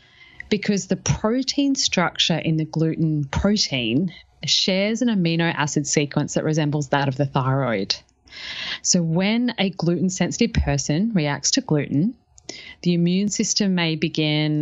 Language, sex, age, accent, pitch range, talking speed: English, female, 30-49, Australian, 145-185 Hz, 130 wpm